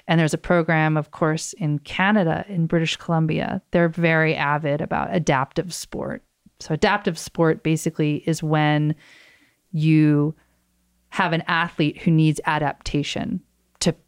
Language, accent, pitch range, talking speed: English, American, 150-195 Hz, 130 wpm